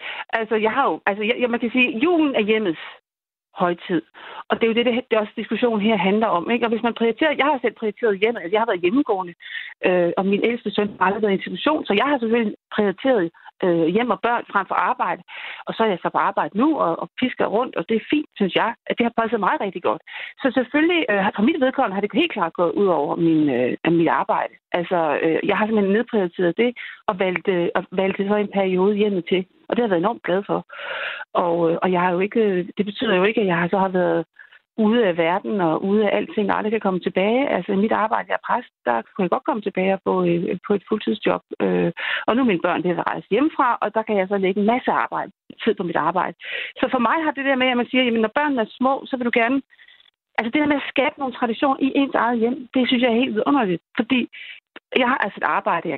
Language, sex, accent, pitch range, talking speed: Danish, female, native, 195-255 Hz, 255 wpm